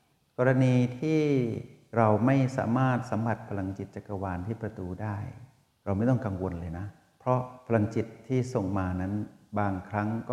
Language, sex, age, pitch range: Thai, male, 60-79, 95-115 Hz